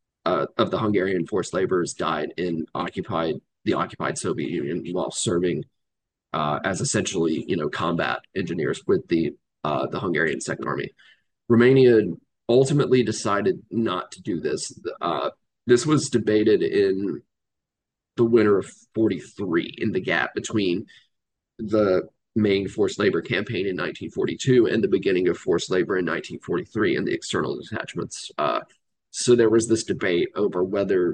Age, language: 30-49, English